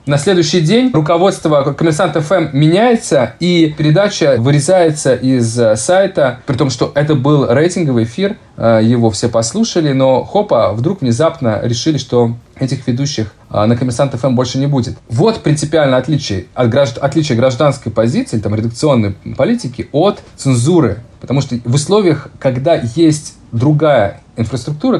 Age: 30-49